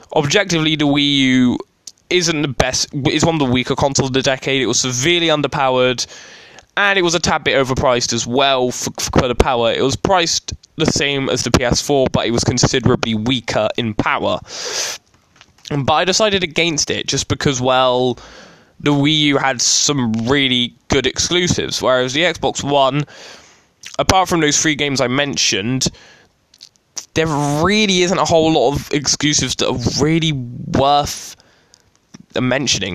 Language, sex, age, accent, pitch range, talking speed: English, male, 10-29, British, 125-155 Hz, 160 wpm